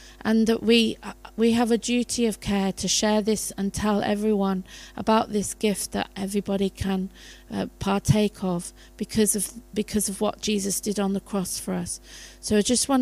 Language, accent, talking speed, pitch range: English, British, 185 wpm, 195-225 Hz